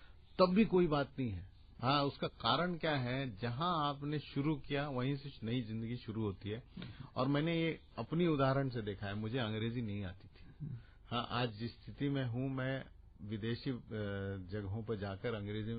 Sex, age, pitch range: male, 50-69, 105-135 Hz